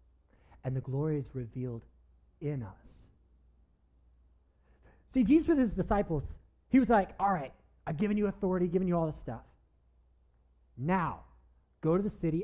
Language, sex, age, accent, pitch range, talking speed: English, male, 30-49, American, 105-180 Hz, 150 wpm